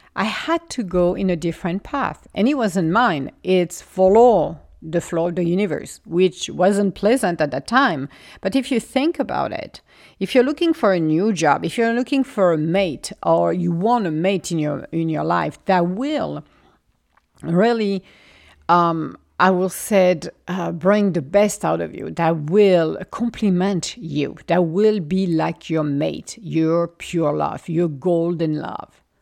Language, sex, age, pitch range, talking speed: English, female, 50-69, 165-205 Hz, 175 wpm